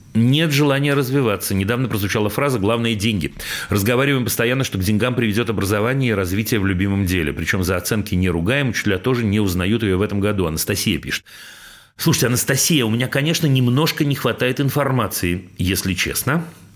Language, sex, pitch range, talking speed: Russian, male, 95-135 Hz, 170 wpm